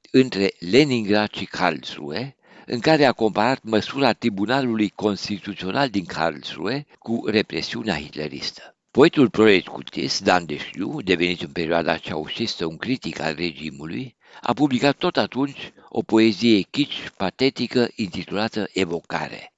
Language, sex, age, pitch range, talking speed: Romanian, male, 60-79, 90-115 Hz, 125 wpm